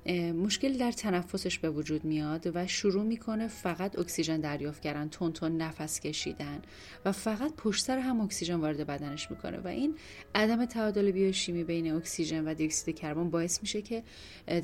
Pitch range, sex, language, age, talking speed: 160-205 Hz, female, Persian, 10-29, 160 wpm